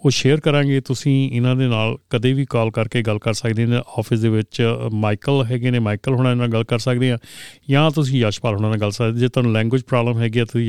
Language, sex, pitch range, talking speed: Punjabi, male, 115-135 Hz, 225 wpm